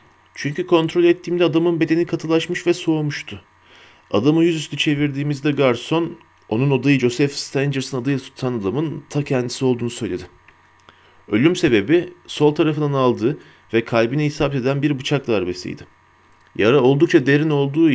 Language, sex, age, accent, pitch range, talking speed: Turkish, male, 40-59, native, 105-155 Hz, 130 wpm